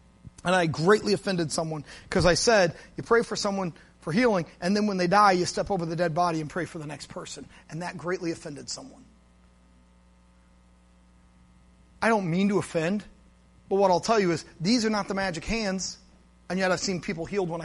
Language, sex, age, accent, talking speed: English, male, 30-49, American, 205 wpm